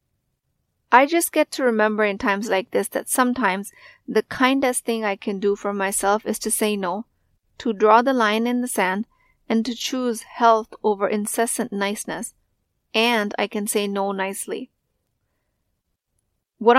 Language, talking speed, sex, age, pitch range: English, 155 wpm, female, 30-49, 205-245 Hz